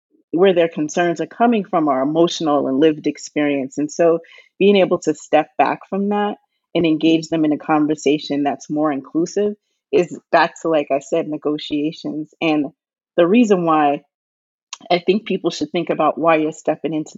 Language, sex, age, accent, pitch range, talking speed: English, female, 30-49, American, 150-185 Hz, 175 wpm